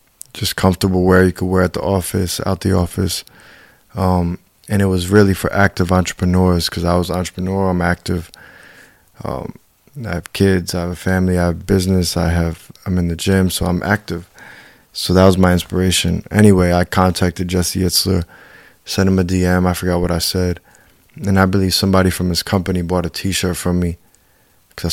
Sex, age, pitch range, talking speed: male, 20-39, 85-95 Hz, 195 wpm